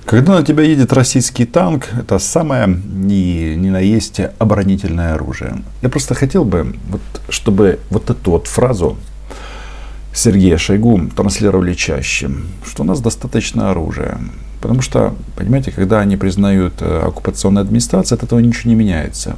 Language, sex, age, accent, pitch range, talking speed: Russian, male, 50-69, native, 85-115 Hz, 135 wpm